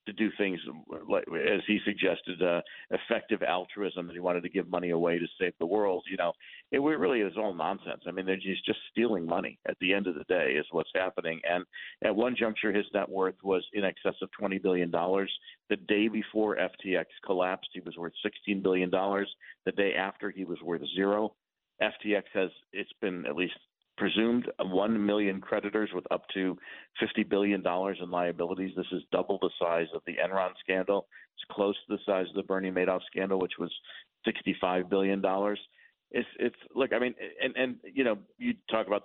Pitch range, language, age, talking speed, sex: 90-105 Hz, English, 50-69, 195 wpm, male